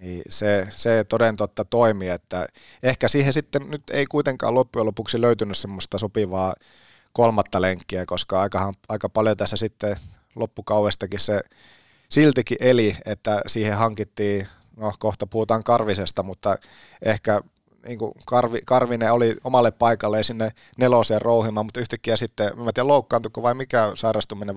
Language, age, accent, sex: Finnish, 30-49, native, male